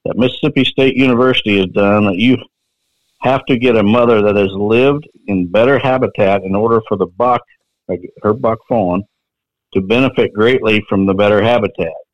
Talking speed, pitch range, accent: 170 wpm, 100-125 Hz, American